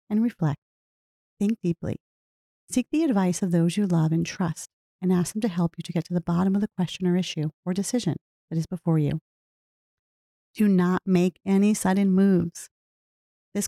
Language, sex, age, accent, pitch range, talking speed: English, female, 40-59, American, 170-215 Hz, 185 wpm